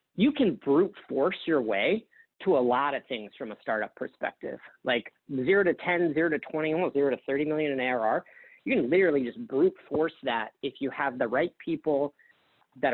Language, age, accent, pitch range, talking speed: English, 40-59, American, 130-180 Hz, 200 wpm